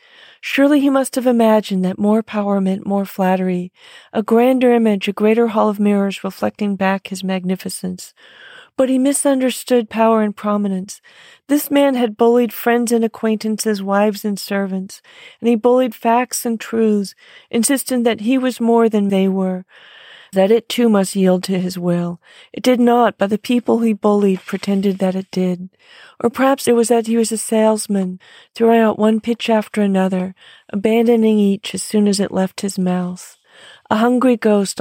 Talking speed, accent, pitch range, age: 170 wpm, American, 195-240 Hz, 40-59